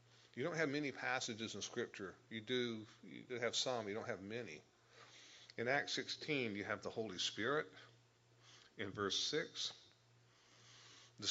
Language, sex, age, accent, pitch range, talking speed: English, male, 50-69, American, 105-125 Hz, 145 wpm